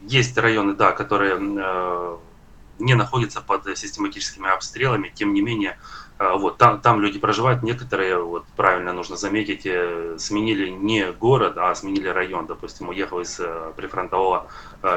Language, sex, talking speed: Russian, male, 145 wpm